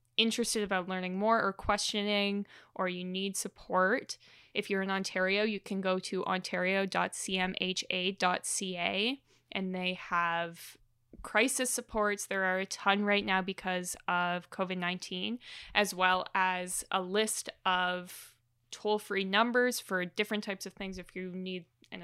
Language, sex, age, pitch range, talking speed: English, female, 20-39, 185-210 Hz, 135 wpm